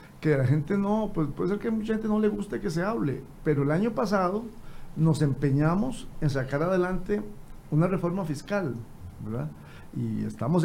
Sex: male